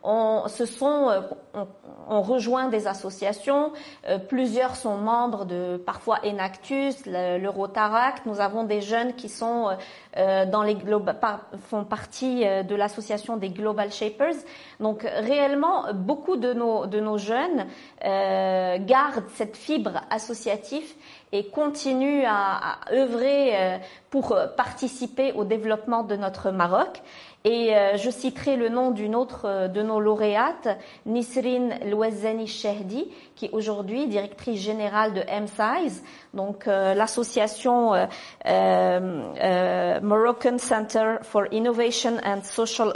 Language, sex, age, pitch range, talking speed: French, female, 40-59, 205-255 Hz, 135 wpm